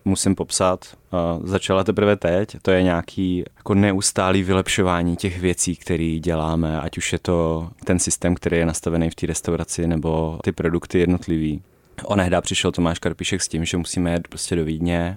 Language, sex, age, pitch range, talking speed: Czech, male, 30-49, 85-90 Hz, 165 wpm